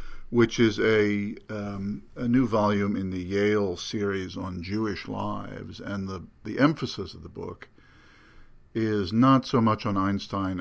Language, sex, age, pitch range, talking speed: English, male, 50-69, 90-110 Hz, 155 wpm